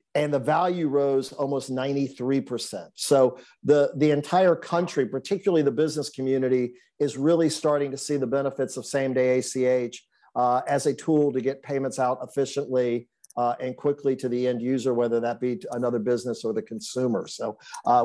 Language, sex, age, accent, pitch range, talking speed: English, male, 50-69, American, 125-165 Hz, 175 wpm